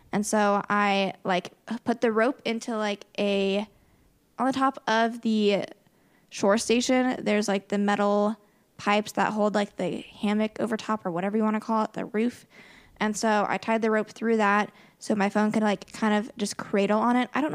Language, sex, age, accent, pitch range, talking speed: English, female, 10-29, American, 205-230 Hz, 200 wpm